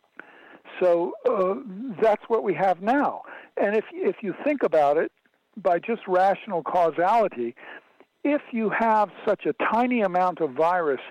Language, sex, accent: English, male, American